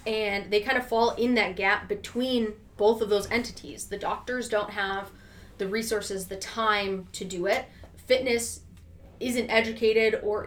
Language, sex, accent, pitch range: English, female, American, 195-220 Hz